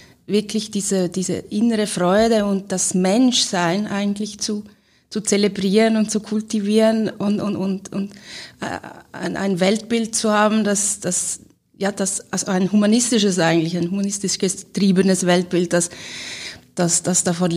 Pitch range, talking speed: 170-205 Hz, 125 wpm